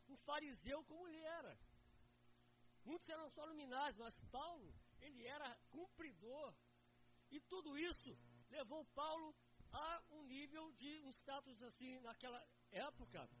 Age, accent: 50-69, Brazilian